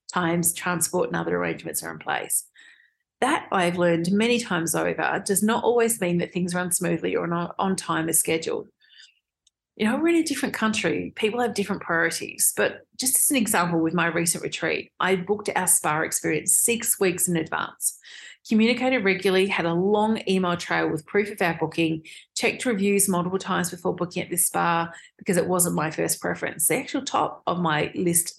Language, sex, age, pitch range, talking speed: English, female, 30-49, 170-220 Hz, 190 wpm